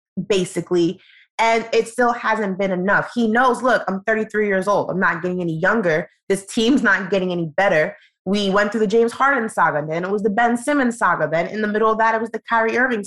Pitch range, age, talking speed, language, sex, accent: 180-225 Hz, 20-39, 230 wpm, English, female, American